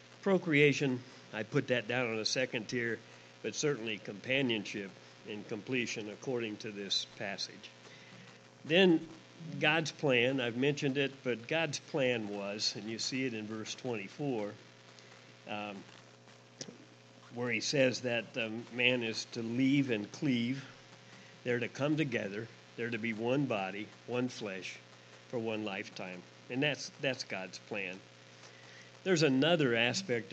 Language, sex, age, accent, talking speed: English, male, 50-69, American, 135 wpm